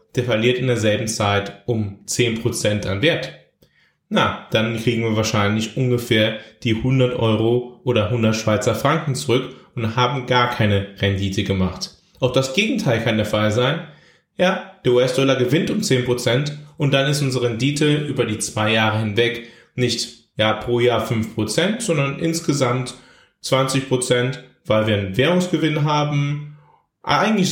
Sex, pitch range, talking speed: male, 110-135 Hz, 145 wpm